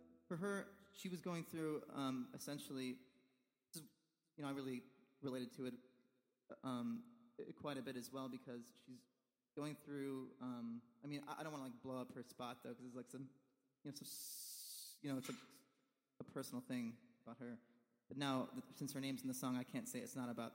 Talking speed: 195 wpm